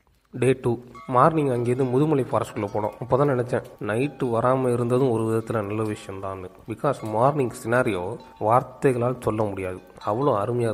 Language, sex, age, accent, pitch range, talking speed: Tamil, male, 30-49, native, 110-140 Hz, 135 wpm